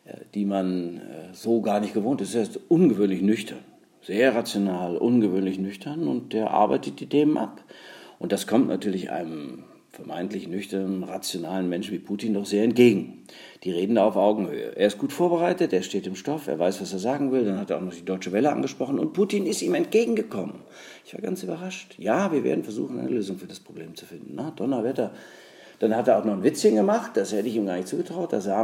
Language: German